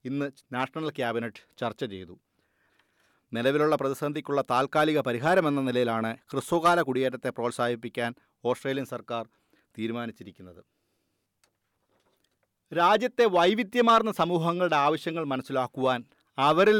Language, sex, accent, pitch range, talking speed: Malayalam, male, native, 125-165 Hz, 80 wpm